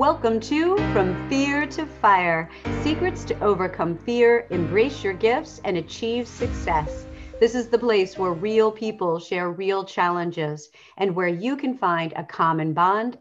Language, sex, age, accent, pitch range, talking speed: English, female, 40-59, American, 195-260 Hz, 155 wpm